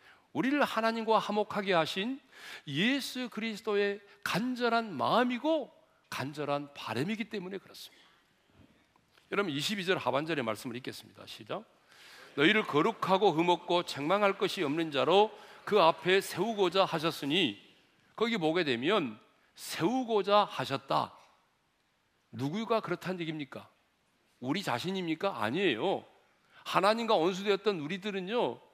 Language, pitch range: Korean, 175-230 Hz